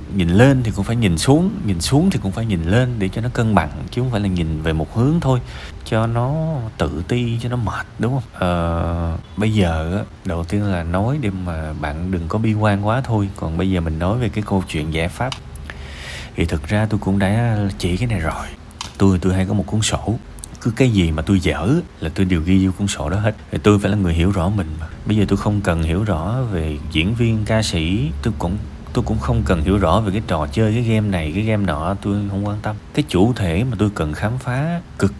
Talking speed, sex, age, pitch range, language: 255 wpm, male, 20-39, 85-110 Hz, Vietnamese